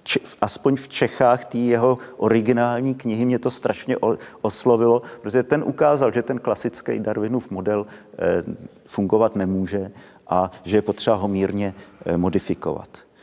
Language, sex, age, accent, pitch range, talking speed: Czech, male, 50-69, native, 100-120 Hz, 125 wpm